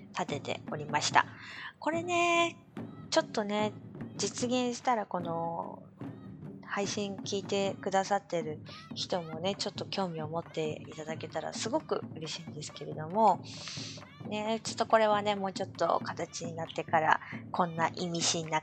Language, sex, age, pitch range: Japanese, female, 20-39, 160-210 Hz